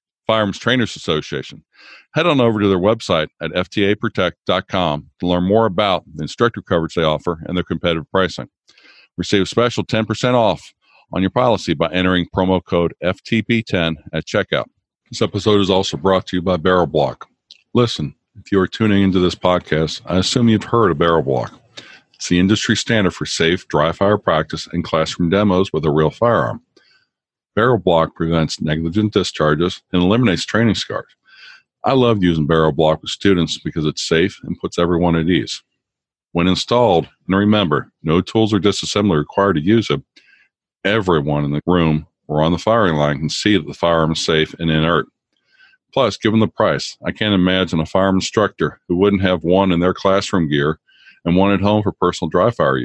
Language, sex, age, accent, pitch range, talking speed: English, male, 50-69, American, 80-100 Hz, 180 wpm